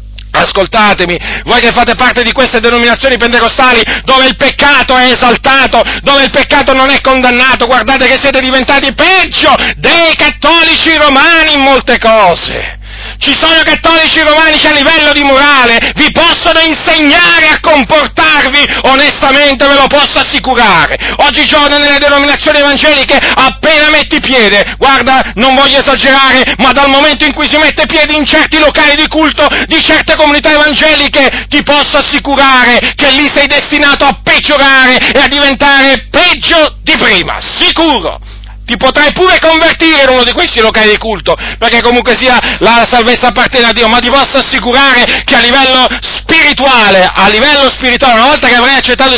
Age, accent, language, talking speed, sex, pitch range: 40-59, native, Italian, 155 wpm, male, 250-295 Hz